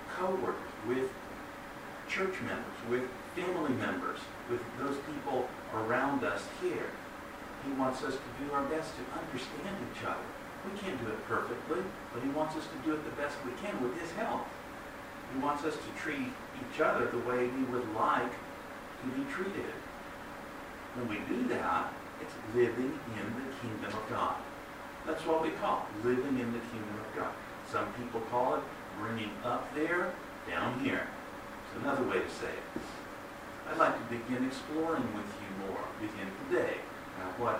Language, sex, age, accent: Japanese, male, 60-79, American